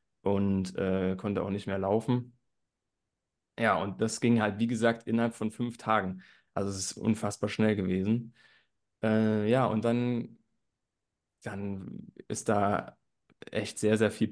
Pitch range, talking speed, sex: 95-110 Hz, 145 wpm, male